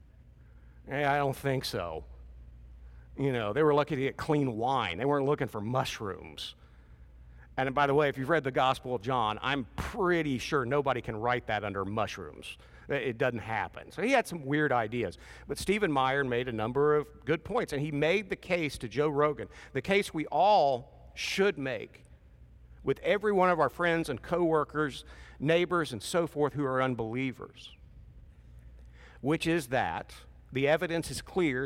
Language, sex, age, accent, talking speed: English, male, 50-69, American, 180 wpm